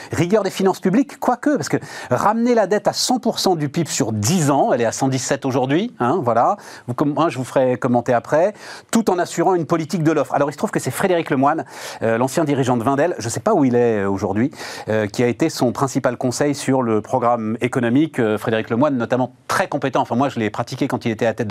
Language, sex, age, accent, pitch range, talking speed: French, male, 40-59, French, 120-165 Hz, 245 wpm